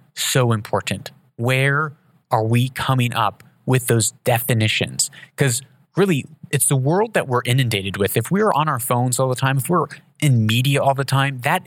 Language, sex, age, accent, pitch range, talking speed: English, male, 30-49, American, 125-155 Hz, 180 wpm